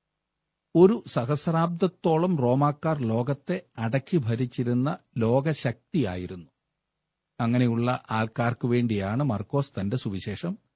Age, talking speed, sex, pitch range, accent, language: 50-69, 75 wpm, male, 115-160 Hz, native, Malayalam